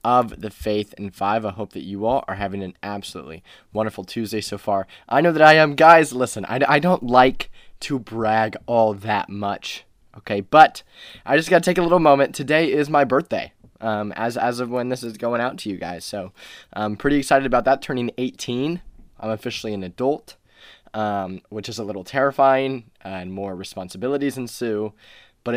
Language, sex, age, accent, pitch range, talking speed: English, male, 20-39, American, 105-140 Hz, 195 wpm